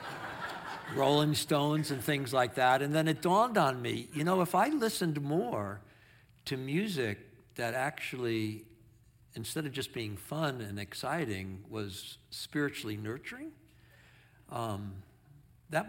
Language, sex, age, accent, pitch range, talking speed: English, male, 60-79, American, 115-165 Hz, 130 wpm